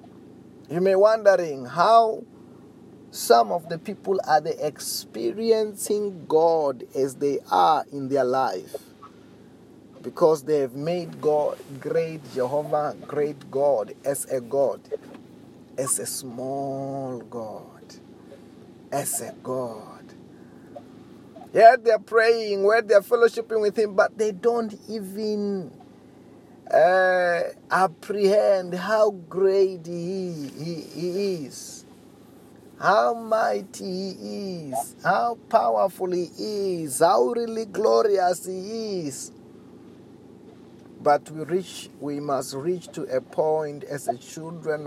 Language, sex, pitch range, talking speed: English, male, 140-200 Hz, 115 wpm